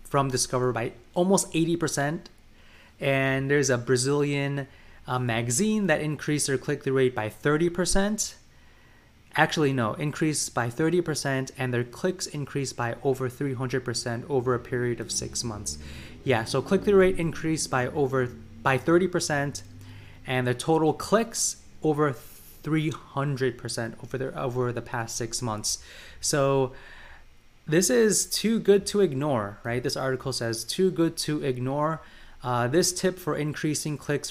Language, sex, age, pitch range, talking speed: English, male, 20-39, 120-160 Hz, 140 wpm